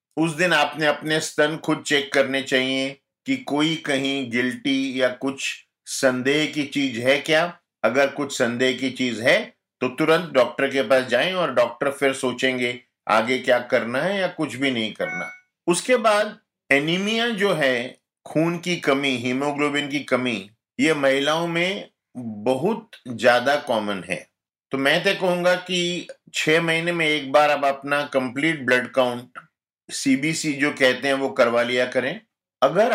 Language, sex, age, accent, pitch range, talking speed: Hindi, male, 50-69, native, 125-155 Hz, 160 wpm